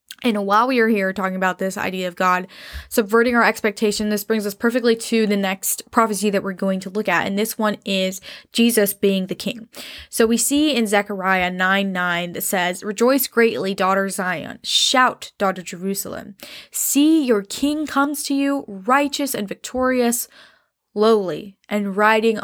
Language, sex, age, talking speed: English, female, 10-29, 170 wpm